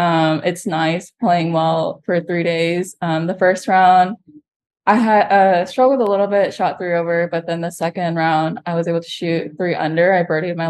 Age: 20-39